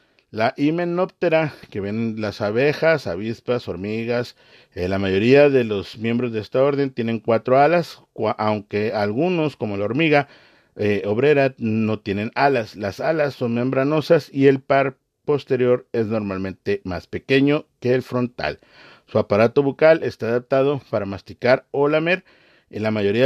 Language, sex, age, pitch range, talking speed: Spanish, male, 50-69, 100-140 Hz, 145 wpm